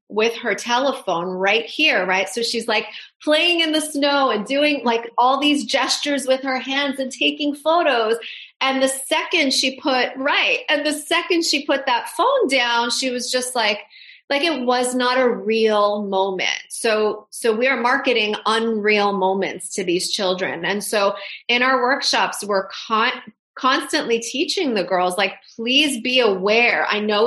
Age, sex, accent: 30-49, female, American